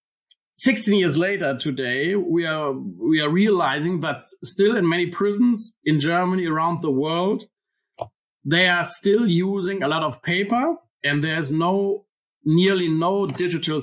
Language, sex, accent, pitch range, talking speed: English, male, German, 160-200 Hz, 145 wpm